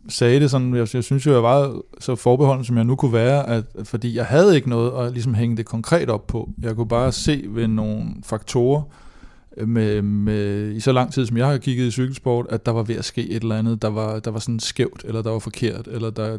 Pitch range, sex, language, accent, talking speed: 110-125 Hz, male, Danish, native, 250 wpm